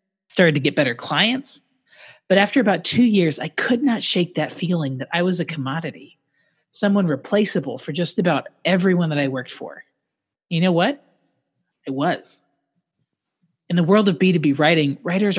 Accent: American